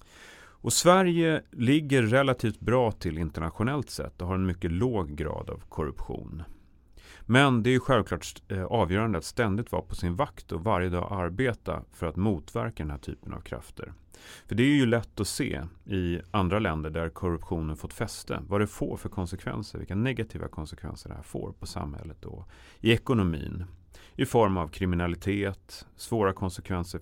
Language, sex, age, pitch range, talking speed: Swedish, male, 30-49, 85-110 Hz, 165 wpm